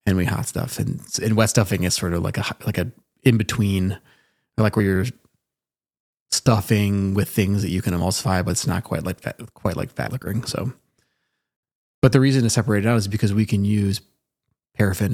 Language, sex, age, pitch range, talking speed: English, male, 30-49, 95-115 Hz, 195 wpm